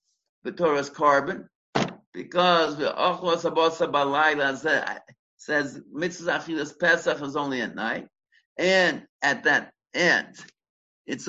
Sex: male